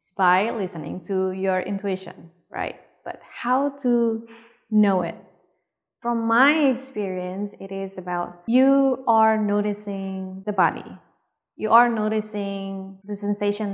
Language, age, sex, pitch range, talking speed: English, 20-39, female, 185-220 Hz, 120 wpm